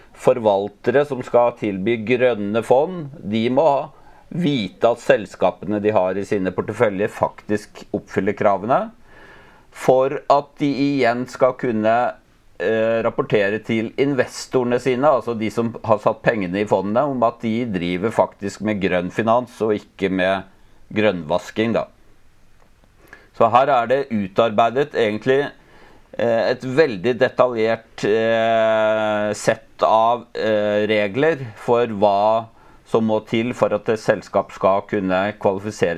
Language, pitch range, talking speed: English, 105-125 Hz, 125 wpm